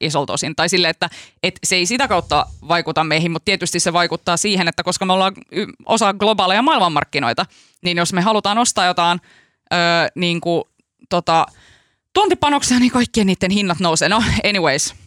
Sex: female